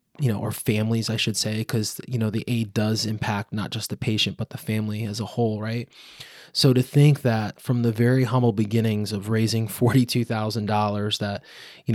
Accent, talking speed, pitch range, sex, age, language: American, 195 wpm, 110-130 Hz, male, 20-39, English